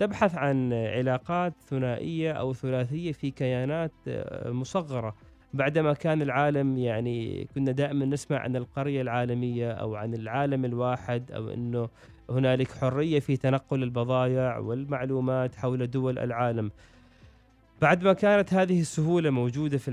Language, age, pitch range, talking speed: Arabic, 30-49, 120-145 Hz, 120 wpm